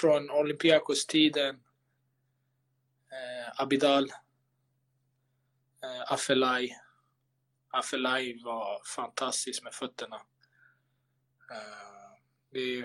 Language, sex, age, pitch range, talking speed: Swedish, male, 20-39, 125-140 Hz, 55 wpm